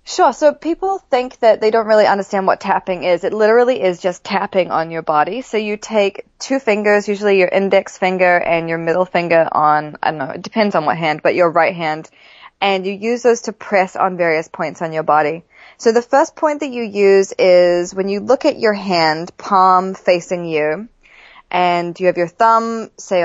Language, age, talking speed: English, 20-39, 210 wpm